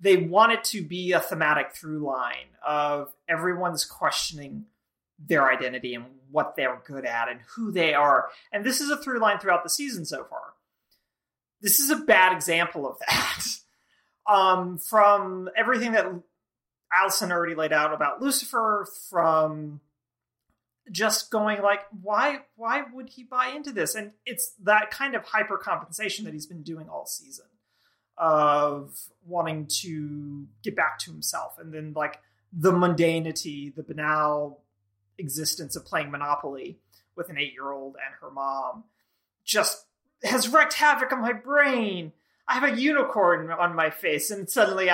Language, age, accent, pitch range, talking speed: English, 30-49, American, 150-225 Hz, 155 wpm